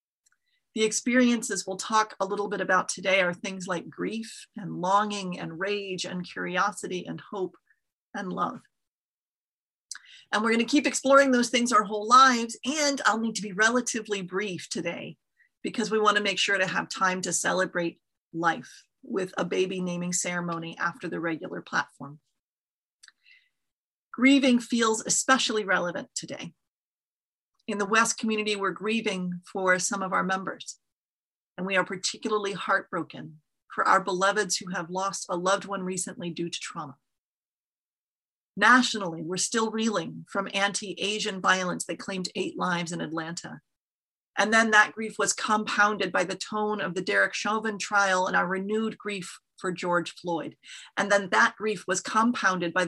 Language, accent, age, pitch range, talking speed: English, American, 30-49, 185-220 Hz, 155 wpm